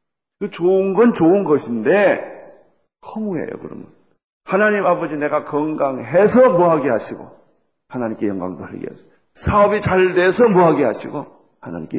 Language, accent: Korean, native